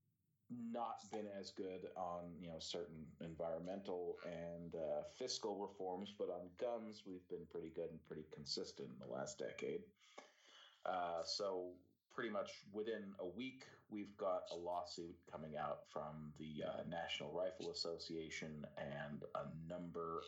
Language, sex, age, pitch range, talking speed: English, male, 40-59, 80-100 Hz, 145 wpm